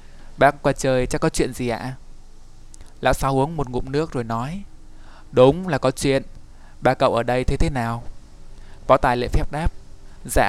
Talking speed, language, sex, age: 190 wpm, Vietnamese, male, 20-39